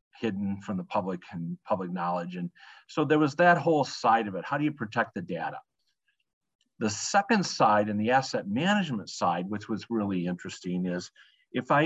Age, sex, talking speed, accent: 50-69, male, 185 wpm, American